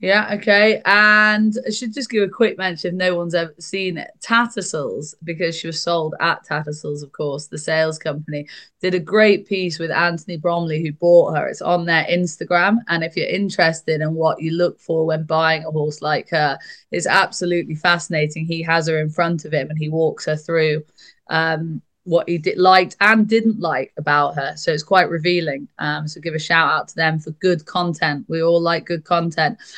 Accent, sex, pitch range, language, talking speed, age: British, female, 165-195 Hz, English, 205 wpm, 20-39